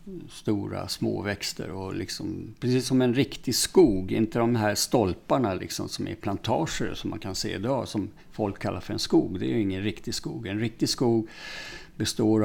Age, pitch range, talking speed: 60-79, 105-130 Hz, 185 wpm